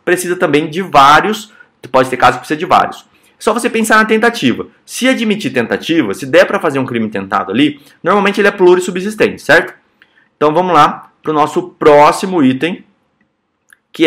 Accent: Brazilian